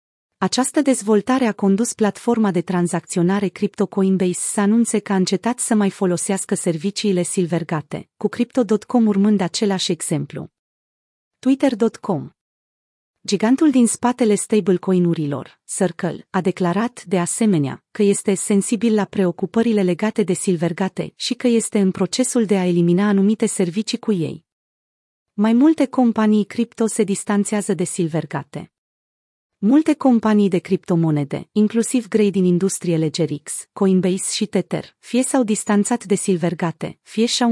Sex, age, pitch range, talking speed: female, 30-49, 180-225 Hz, 130 wpm